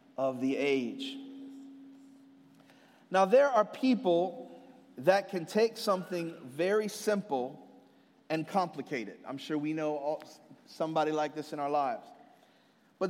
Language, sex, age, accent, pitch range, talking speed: English, male, 40-59, American, 175-225 Hz, 120 wpm